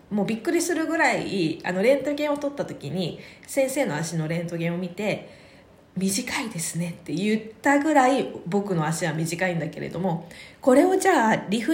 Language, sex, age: Japanese, female, 20-39